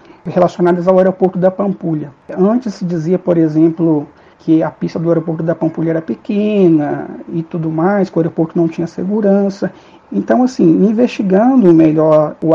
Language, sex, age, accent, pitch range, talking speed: Portuguese, male, 60-79, Brazilian, 165-210 Hz, 160 wpm